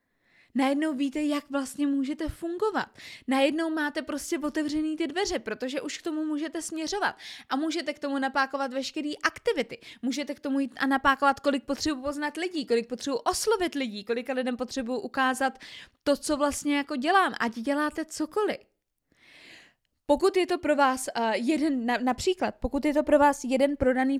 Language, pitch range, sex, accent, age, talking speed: Czech, 245-300 Hz, female, native, 20-39, 165 wpm